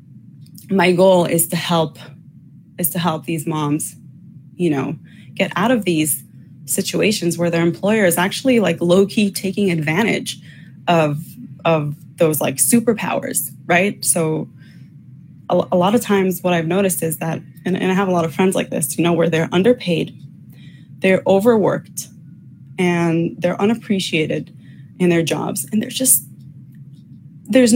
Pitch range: 155-200 Hz